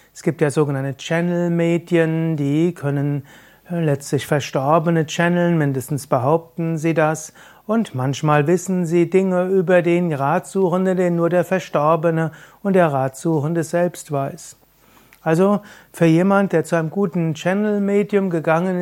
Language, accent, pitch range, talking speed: German, German, 150-180 Hz, 130 wpm